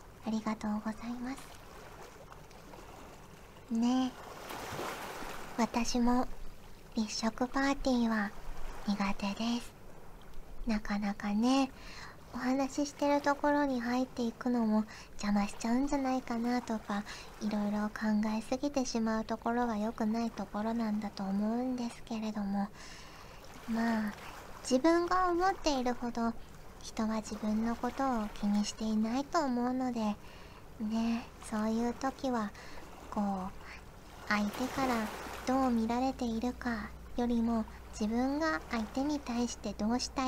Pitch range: 215-255 Hz